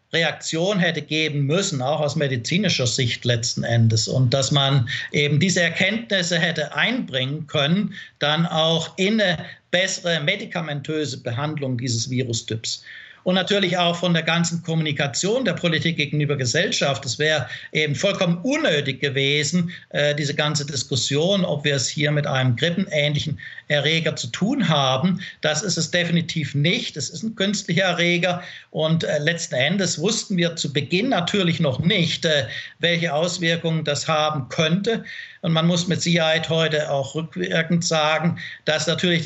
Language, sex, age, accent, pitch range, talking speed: German, male, 50-69, German, 145-175 Hz, 150 wpm